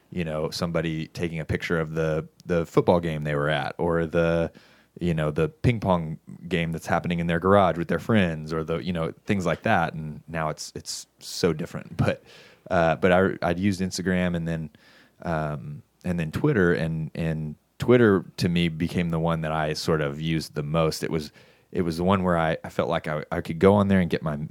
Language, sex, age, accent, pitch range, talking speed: English, male, 20-39, American, 75-90 Hz, 225 wpm